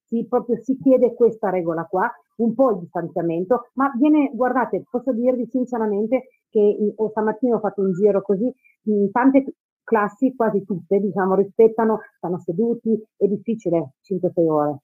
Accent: native